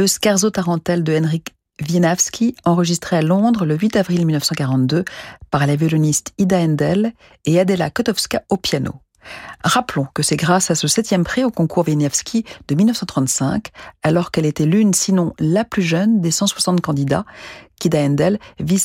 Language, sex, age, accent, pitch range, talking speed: French, female, 40-59, French, 155-210 Hz, 160 wpm